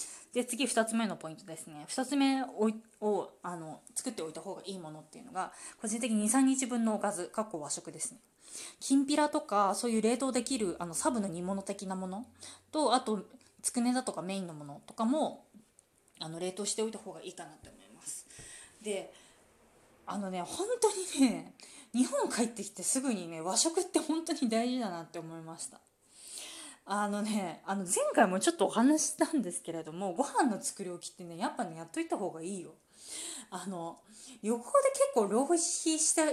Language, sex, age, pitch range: Japanese, female, 20-39, 180-270 Hz